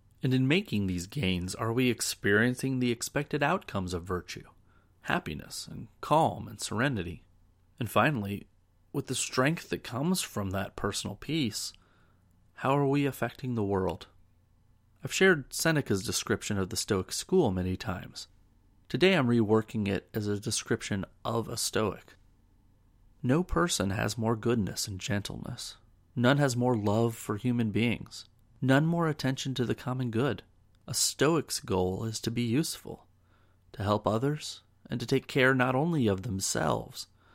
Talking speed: 150 wpm